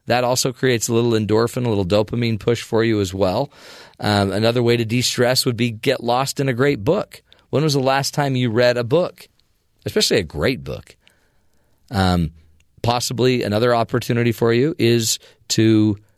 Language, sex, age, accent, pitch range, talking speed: English, male, 40-59, American, 95-125 Hz, 180 wpm